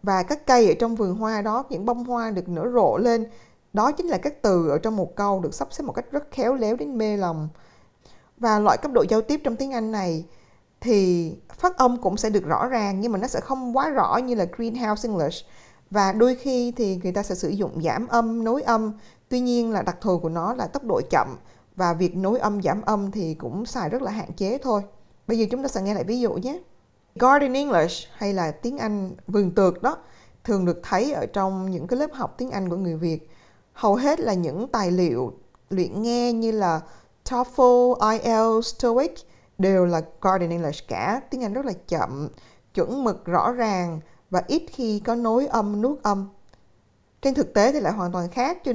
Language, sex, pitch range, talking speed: Vietnamese, female, 185-245 Hz, 220 wpm